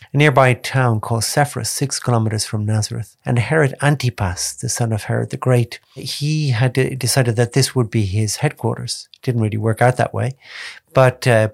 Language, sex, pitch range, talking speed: English, male, 105-130 Hz, 180 wpm